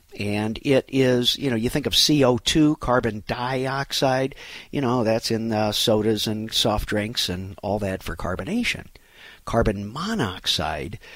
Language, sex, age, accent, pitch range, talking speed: English, male, 50-69, American, 110-135 Hz, 145 wpm